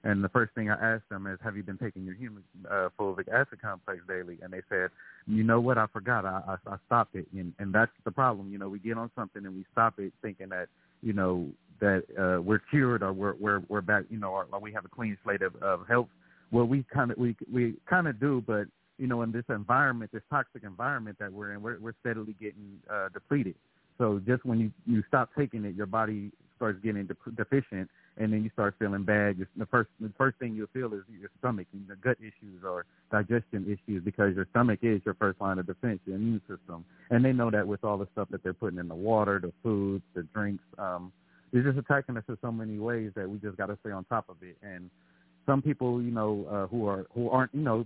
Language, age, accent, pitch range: English, 40-59, American, 95-120 Hz